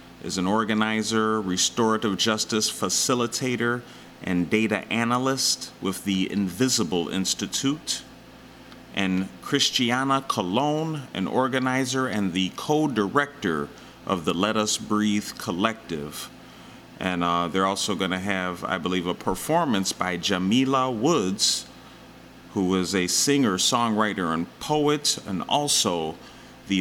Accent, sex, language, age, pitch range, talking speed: American, male, English, 30-49, 95-125 Hz, 110 wpm